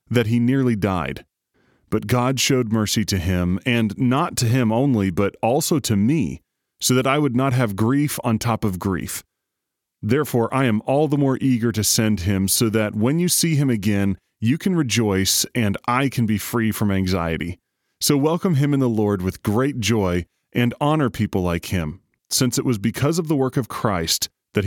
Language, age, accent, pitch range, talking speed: English, 30-49, American, 100-130 Hz, 195 wpm